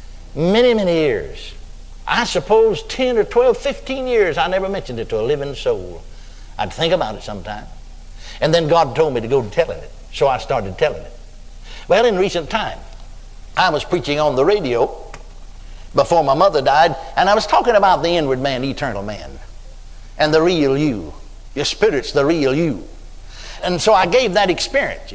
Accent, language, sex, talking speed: American, English, male, 180 wpm